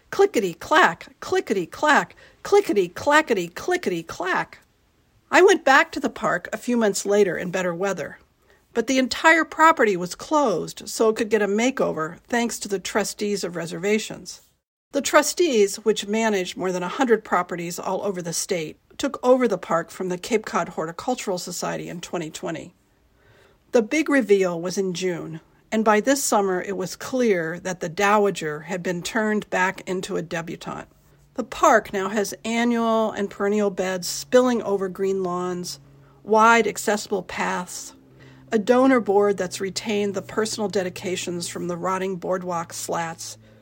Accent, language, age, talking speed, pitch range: American, English, 50-69, 150 wpm, 180-230 Hz